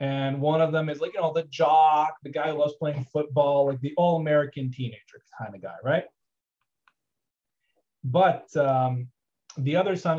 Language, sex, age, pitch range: English, male, 30-49, 125-155 Hz